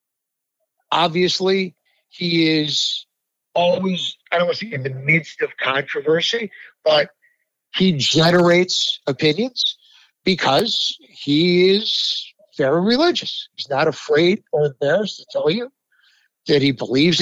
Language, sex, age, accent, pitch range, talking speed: English, male, 60-79, American, 160-240 Hz, 120 wpm